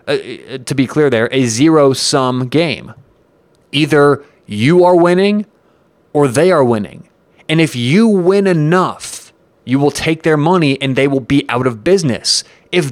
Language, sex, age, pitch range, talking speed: English, male, 30-49, 130-180 Hz, 160 wpm